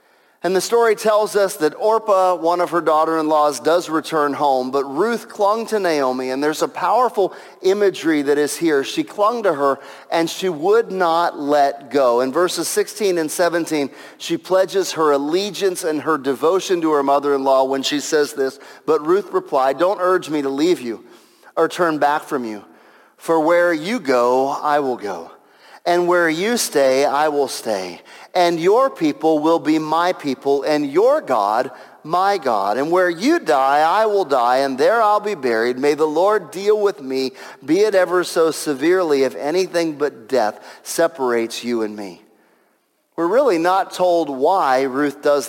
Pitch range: 140-185 Hz